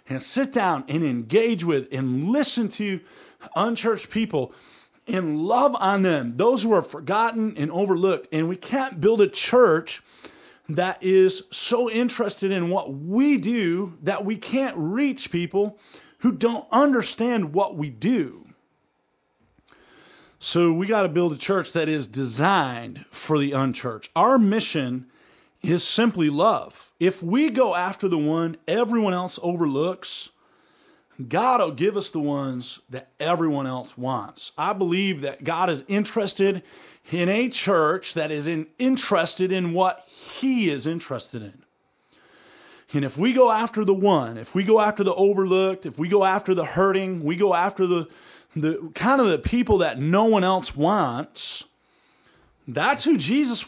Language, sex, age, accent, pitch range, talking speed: English, male, 40-59, American, 160-220 Hz, 155 wpm